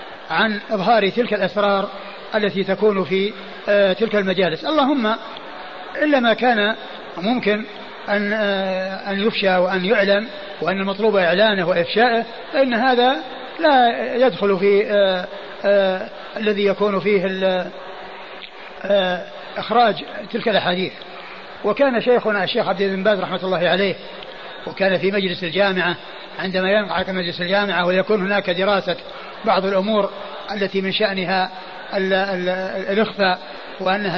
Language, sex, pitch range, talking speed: Arabic, male, 190-220 Hz, 105 wpm